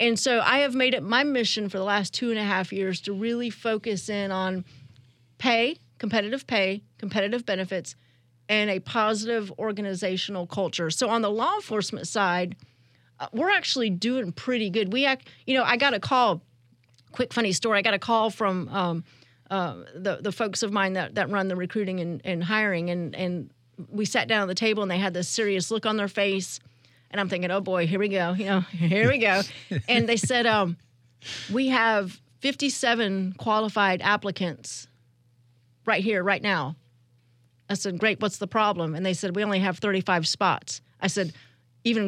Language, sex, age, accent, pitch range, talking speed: English, female, 40-59, American, 175-225 Hz, 190 wpm